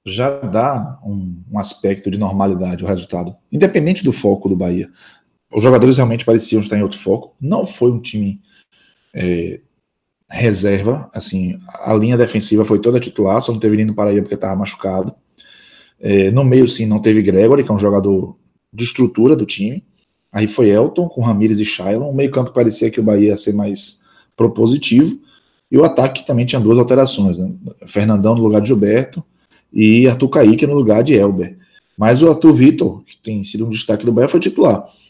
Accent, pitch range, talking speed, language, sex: Brazilian, 105-130 Hz, 185 wpm, Portuguese, male